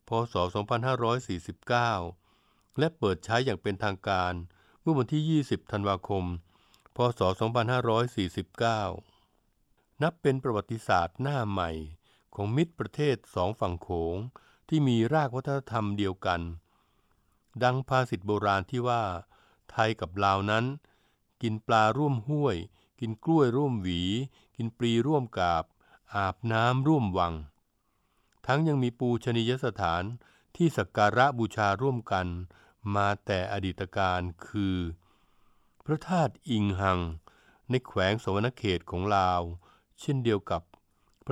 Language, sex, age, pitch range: Thai, male, 60-79, 95-125 Hz